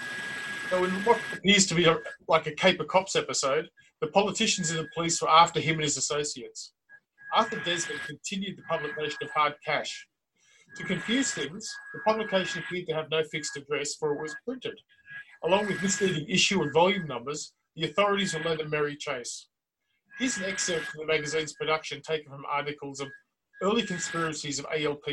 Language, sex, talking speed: English, male, 180 wpm